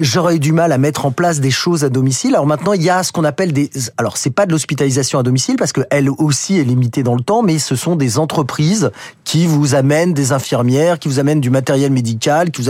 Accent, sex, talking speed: French, male, 255 wpm